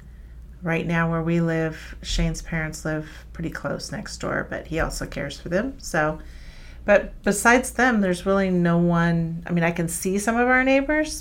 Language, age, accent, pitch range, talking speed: English, 40-59, American, 150-180 Hz, 185 wpm